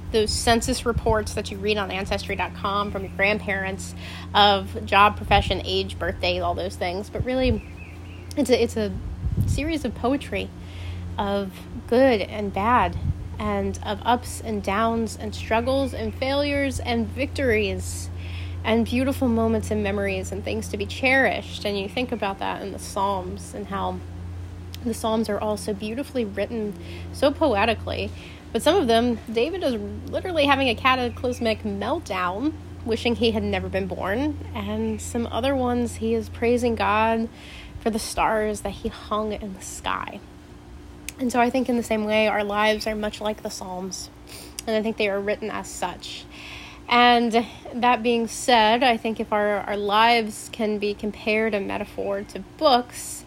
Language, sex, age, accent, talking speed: English, female, 30-49, American, 165 wpm